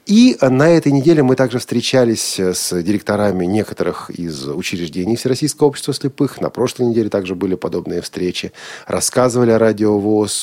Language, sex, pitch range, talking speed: Russian, male, 105-140 Hz, 145 wpm